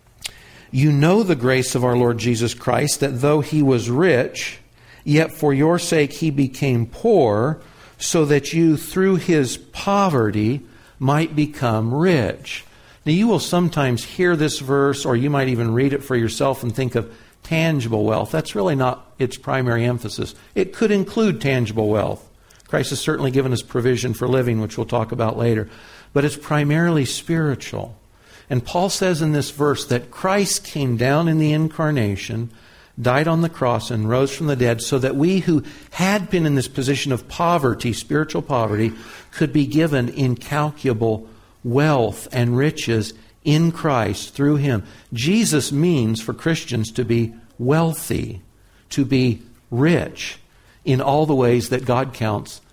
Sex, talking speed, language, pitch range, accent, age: male, 160 wpm, English, 120-155 Hz, American, 60-79